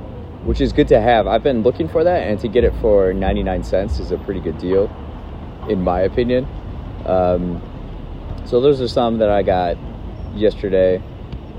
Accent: American